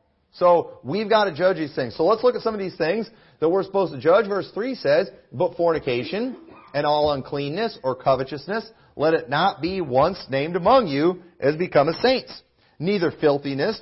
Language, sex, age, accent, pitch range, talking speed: English, male, 40-59, American, 140-185 Hz, 190 wpm